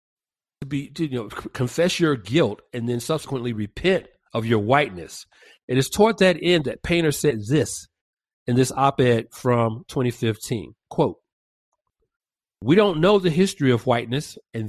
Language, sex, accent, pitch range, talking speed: English, male, American, 120-160 Hz, 145 wpm